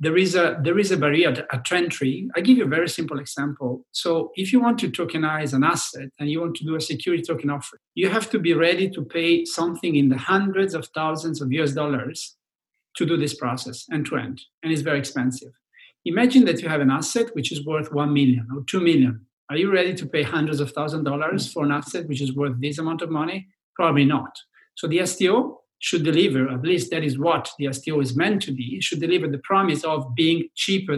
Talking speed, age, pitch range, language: 230 wpm, 50-69, 140-175 Hz, English